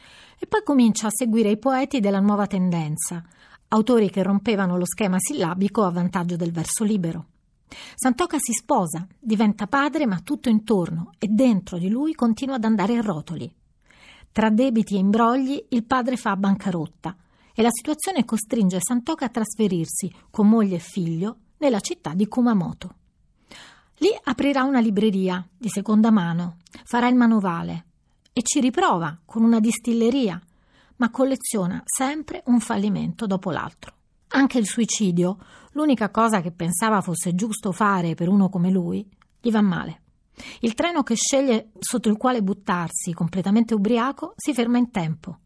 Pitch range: 180-240 Hz